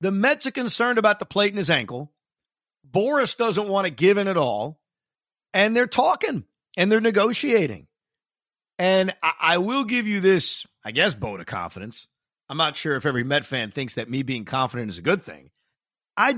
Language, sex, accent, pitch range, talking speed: English, male, American, 135-190 Hz, 195 wpm